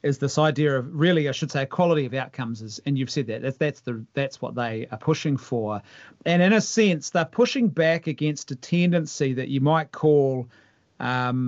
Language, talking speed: English, 215 wpm